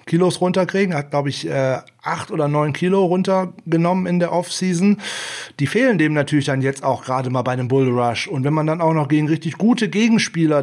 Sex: male